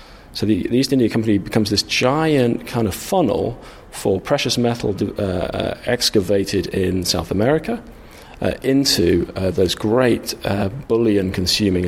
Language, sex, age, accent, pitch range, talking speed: English, male, 40-59, British, 95-120 Hz, 135 wpm